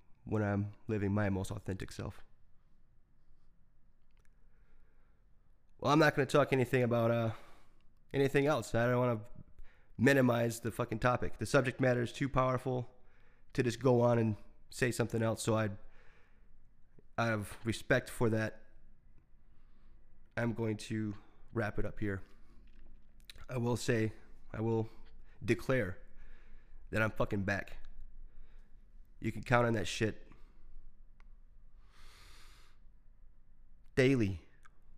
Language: English